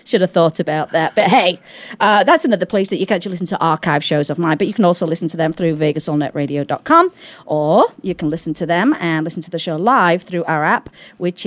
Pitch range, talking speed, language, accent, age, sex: 165-245 Hz, 240 wpm, English, British, 40-59, female